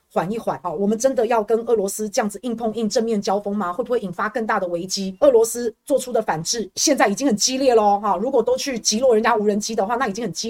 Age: 30-49